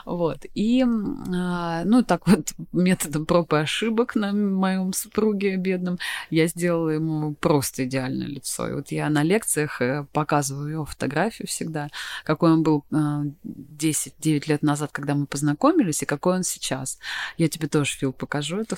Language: Russian